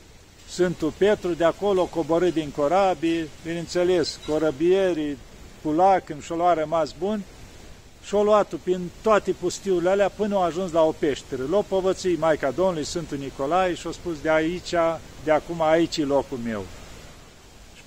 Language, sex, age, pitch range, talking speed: Romanian, male, 50-69, 150-185 Hz, 140 wpm